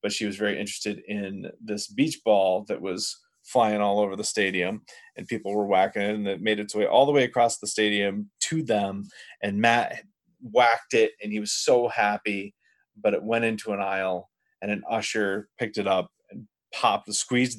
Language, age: English, 30-49